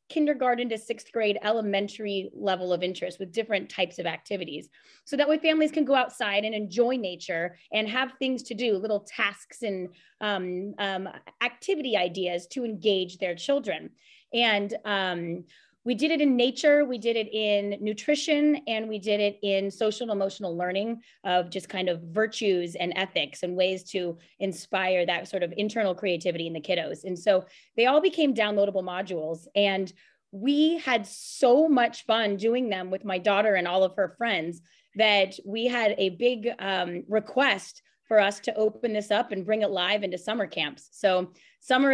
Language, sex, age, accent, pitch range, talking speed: English, female, 20-39, American, 190-235 Hz, 175 wpm